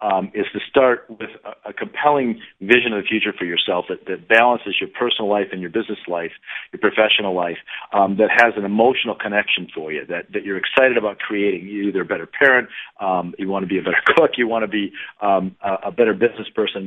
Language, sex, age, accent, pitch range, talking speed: English, male, 40-59, American, 100-135 Hz, 230 wpm